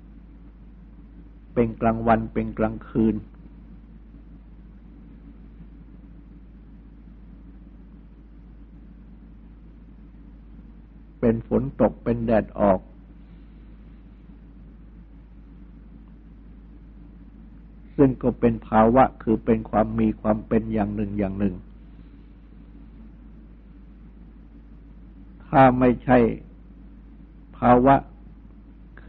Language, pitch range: Thai, 110-120 Hz